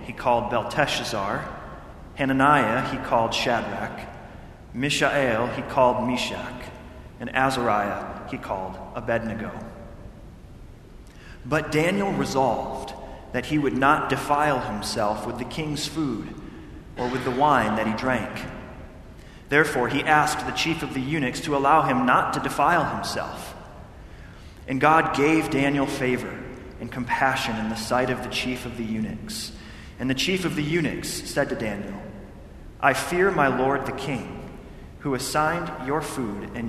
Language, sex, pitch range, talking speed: English, male, 115-140 Hz, 140 wpm